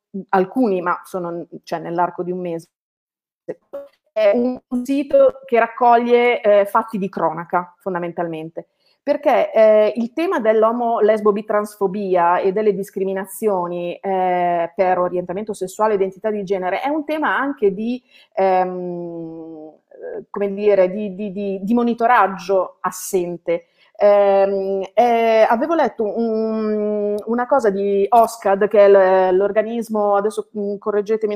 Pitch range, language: 185-220 Hz, Italian